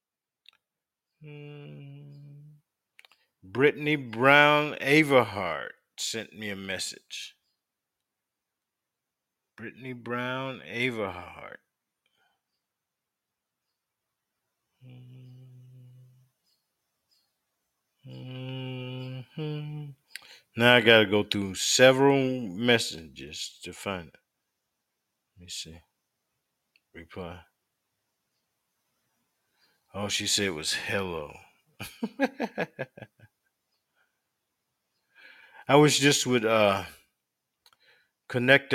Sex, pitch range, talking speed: male, 100-130 Hz, 60 wpm